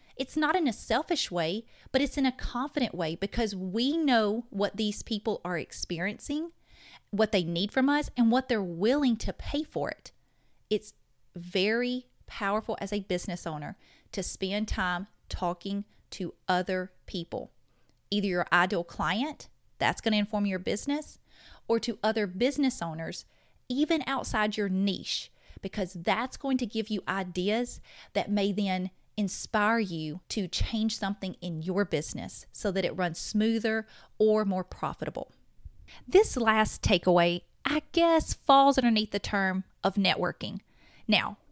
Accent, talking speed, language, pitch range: American, 150 wpm, English, 190-245 Hz